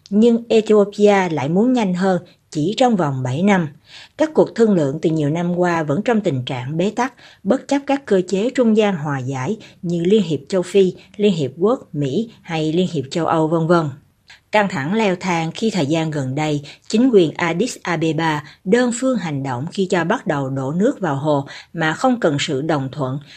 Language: Vietnamese